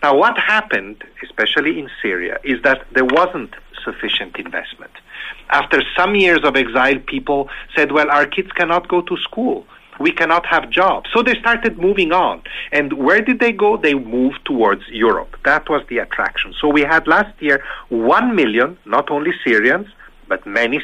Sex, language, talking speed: male, English, 175 wpm